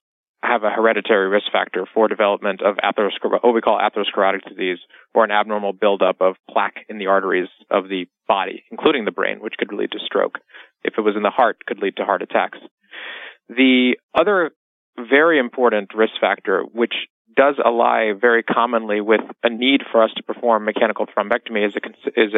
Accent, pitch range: American, 105-120 Hz